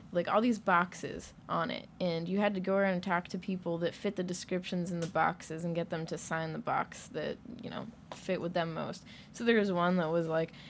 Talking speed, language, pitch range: 245 wpm, English, 170-205 Hz